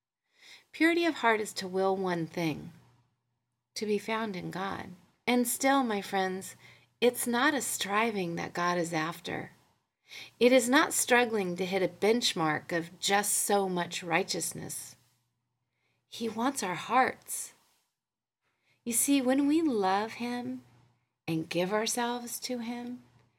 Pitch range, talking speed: 155-225 Hz, 135 wpm